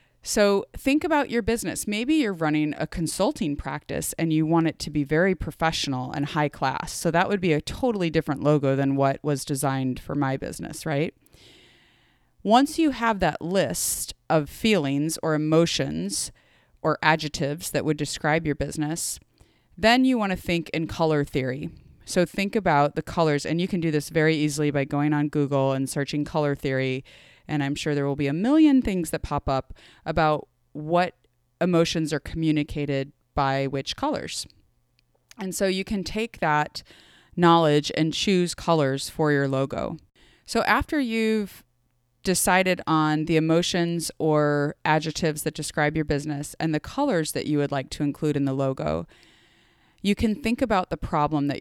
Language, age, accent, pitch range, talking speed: English, 30-49, American, 140-175 Hz, 170 wpm